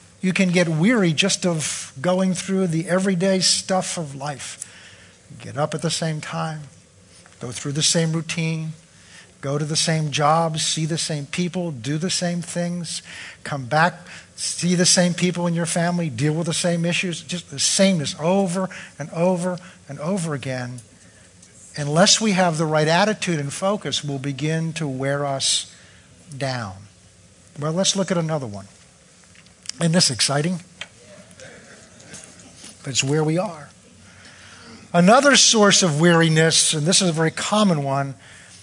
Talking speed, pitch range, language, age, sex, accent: 150 wpm, 135-180 Hz, English, 50-69, male, American